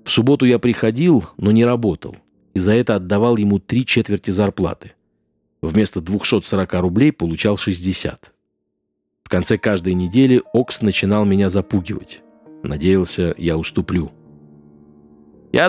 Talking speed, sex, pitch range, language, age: 120 wpm, male, 85-115 Hz, Russian, 50-69